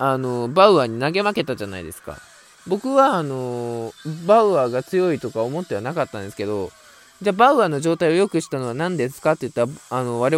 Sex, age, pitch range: male, 20-39, 125-185 Hz